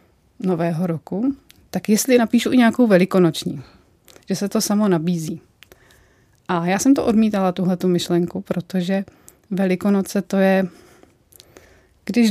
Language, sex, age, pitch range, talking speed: Czech, female, 30-49, 175-205 Hz, 120 wpm